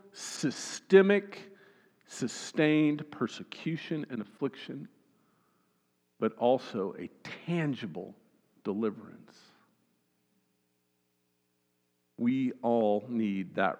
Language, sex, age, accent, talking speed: English, male, 50-69, American, 60 wpm